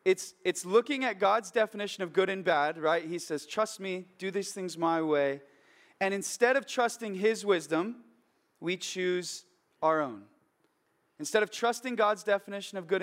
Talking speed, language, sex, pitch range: 170 wpm, English, male, 160-210 Hz